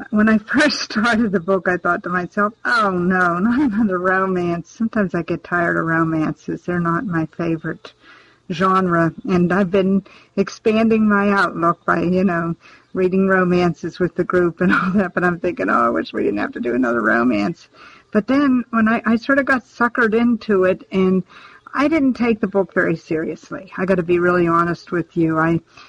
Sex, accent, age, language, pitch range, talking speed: female, American, 50-69, English, 175-215 Hz, 195 wpm